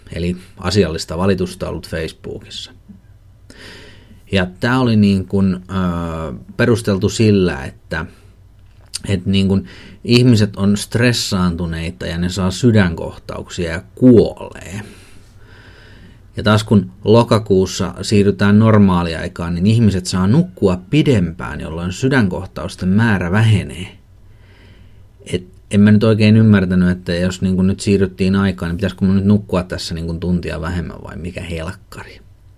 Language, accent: Finnish, native